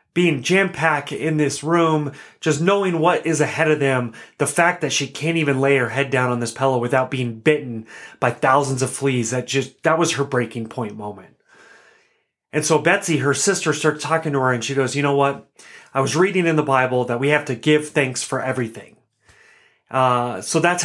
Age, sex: 30-49, male